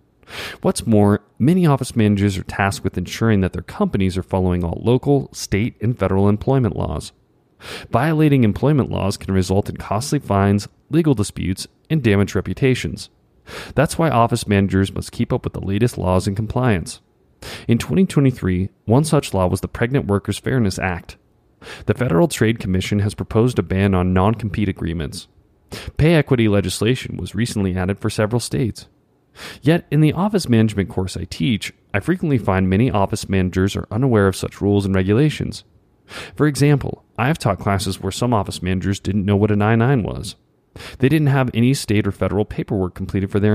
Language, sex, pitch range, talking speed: English, male, 95-125 Hz, 175 wpm